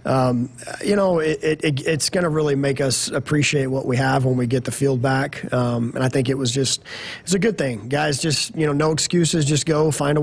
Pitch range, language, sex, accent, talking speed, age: 130-145 Hz, English, male, American, 235 wpm, 30-49